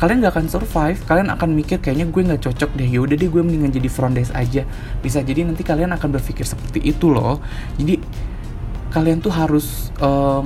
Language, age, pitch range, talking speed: Indonesian, 20-39, 130-165 Hz, 195 wpm